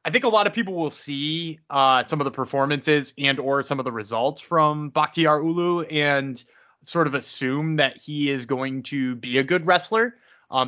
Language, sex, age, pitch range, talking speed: English, male, 20-39, 135-165 Hz, 200 wpm